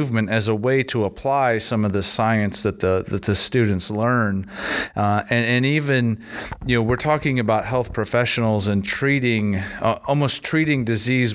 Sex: male